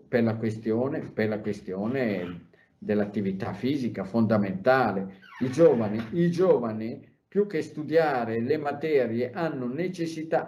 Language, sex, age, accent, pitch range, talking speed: Italian, male, 50-69, native, 120-165 Hz, 110 wpm